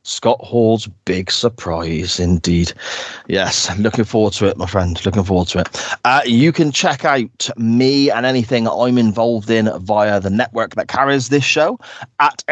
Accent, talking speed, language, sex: British, 175 wpm, English, male